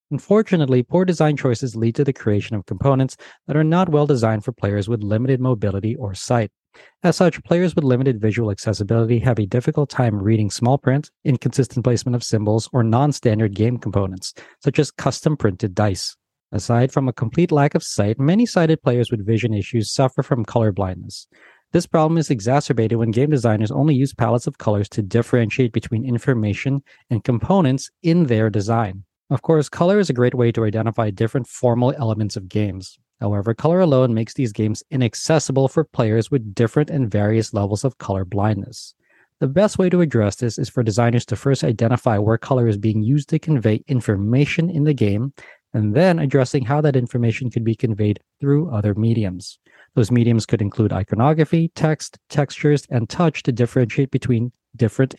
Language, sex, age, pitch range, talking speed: English, male, 40-59, 110-140 Hz, 180 wpm